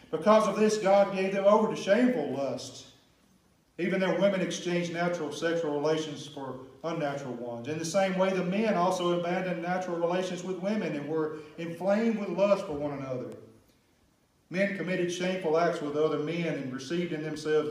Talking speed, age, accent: 175 wpm, 40-59, American